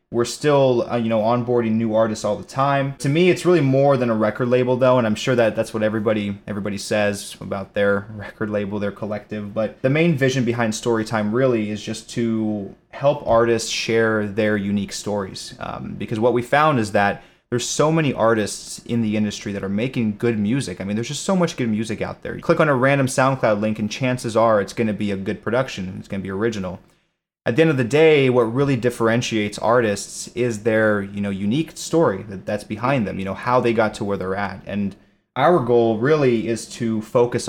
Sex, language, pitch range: male, English, 105-120 Hz